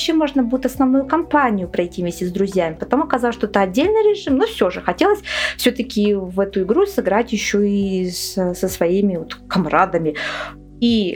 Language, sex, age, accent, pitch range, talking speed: Russian, female, 20-39, native, 195-260 Hz, 165 wpm